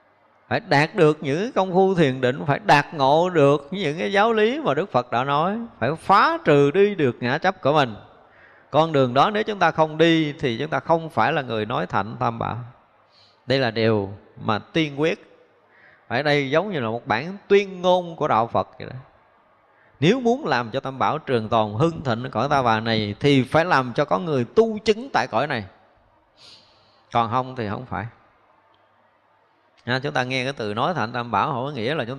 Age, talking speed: 20-39, 210 wpm